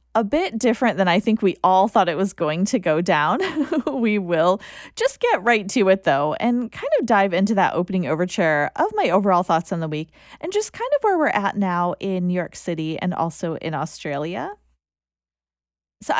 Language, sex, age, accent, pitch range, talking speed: English, female, 20-39, American, 180-260 Hz, 205 wpm